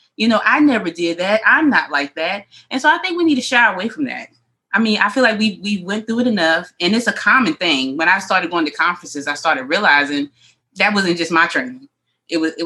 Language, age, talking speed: English, 20-39, 255 wpm